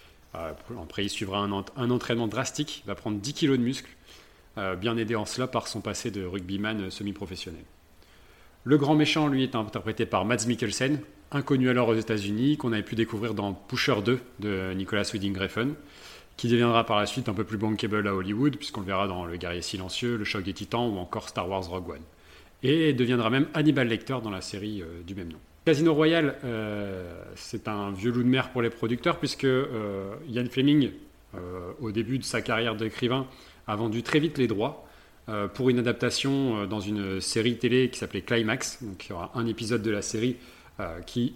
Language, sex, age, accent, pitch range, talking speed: French, male, 30-49, French, 100-125 Hz, 205 wpm